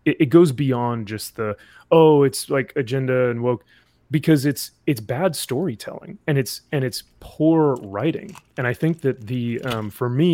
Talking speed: 175 wpm